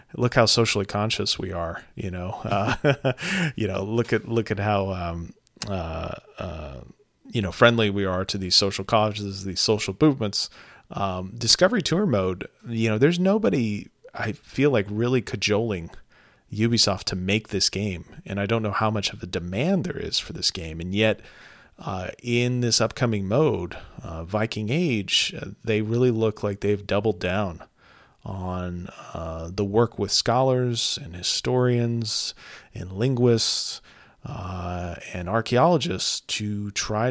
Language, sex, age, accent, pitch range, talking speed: English, male, 30-49, American, 95-115 Hz, 155 wpm